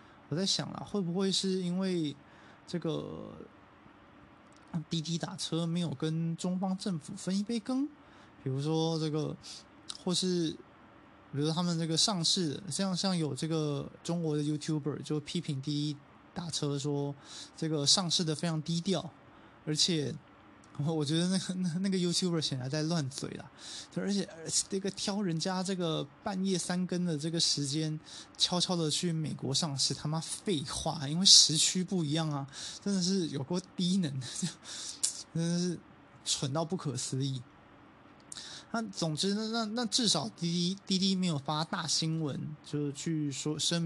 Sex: male